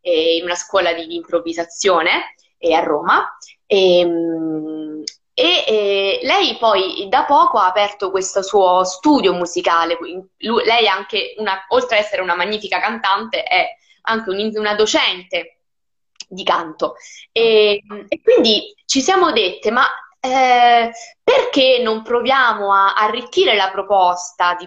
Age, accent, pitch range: 20-39, native, 185-265 Hz